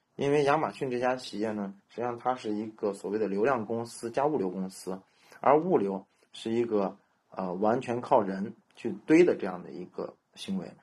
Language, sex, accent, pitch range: Chinese, male, native, 100-130 Hz